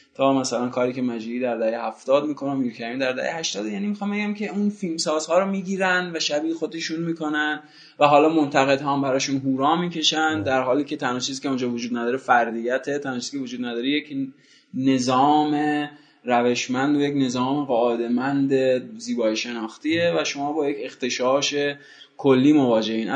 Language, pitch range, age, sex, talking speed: Persian, 115-150 Hz, 20-39, male, 155 wpm